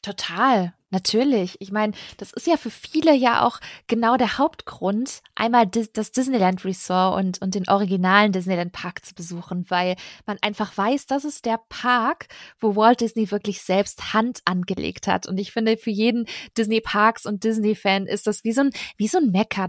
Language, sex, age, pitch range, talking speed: German, female, 20-39, 195-235 Hz, 175 wpm